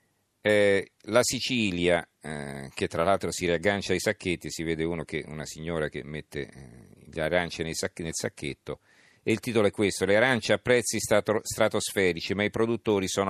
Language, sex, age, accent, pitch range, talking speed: Italian, male, 40-59, native, 85-110 Hz, 170 wpm